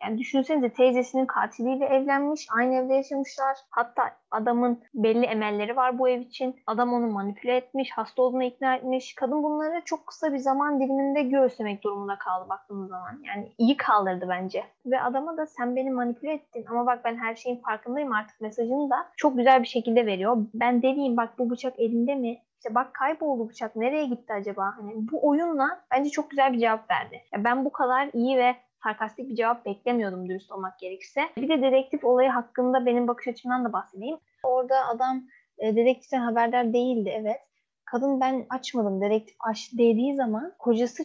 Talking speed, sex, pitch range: 175 wpm, female, 225-265 Hz